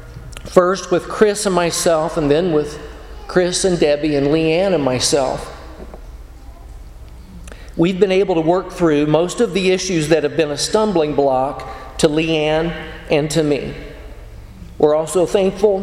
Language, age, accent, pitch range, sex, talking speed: English, 50-69, American, 135-180 Hz, male, 150 wpm